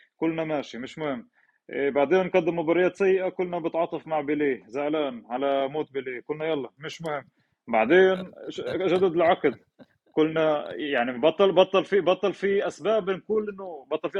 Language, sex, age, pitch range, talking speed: Arabic, male, 30-49, 150-185 Hz, 150 wpm